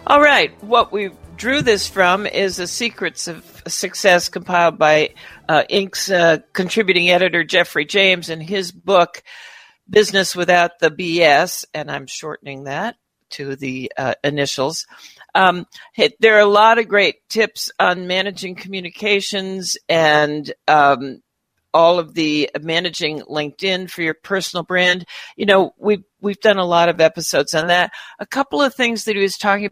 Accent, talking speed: American, 155 wpm